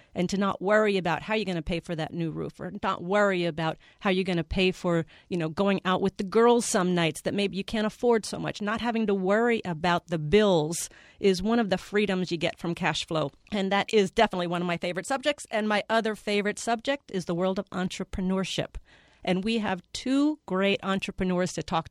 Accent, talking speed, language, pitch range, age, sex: American, 230 wpm, English, 180-230 Hz, 40-59, female